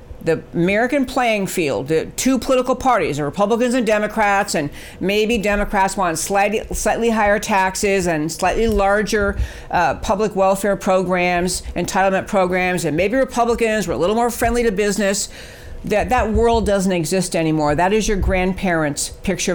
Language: English